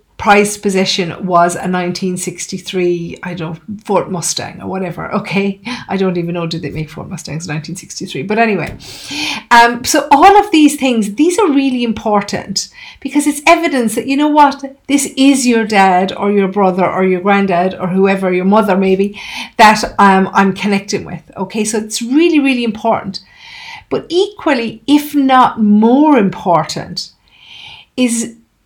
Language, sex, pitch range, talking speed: English, female, 195-270 Hz, 155 wpm